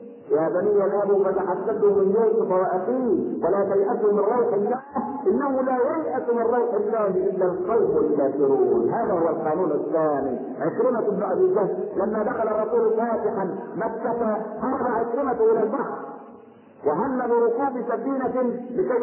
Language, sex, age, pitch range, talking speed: Arabic, male, 50-69, 220-255 Hz, 130 wpm